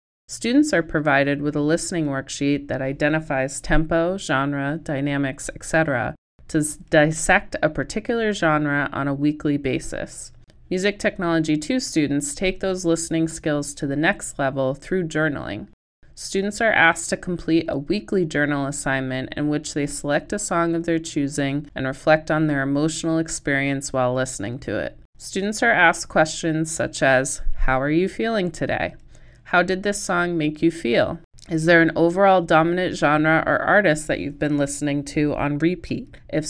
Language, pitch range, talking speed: English, 145-175 Hz, 160 wpm